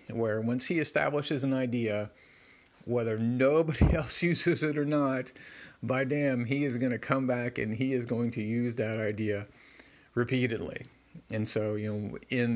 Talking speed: 165 wpm